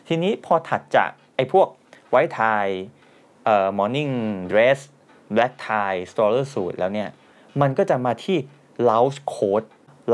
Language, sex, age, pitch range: Thai, male, 20-39, 110-145 Hz